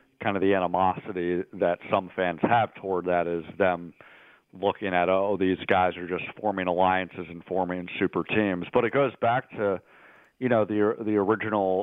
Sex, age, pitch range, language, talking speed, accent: male, 40-59, 90-100 Hz, English, 180 wpm, American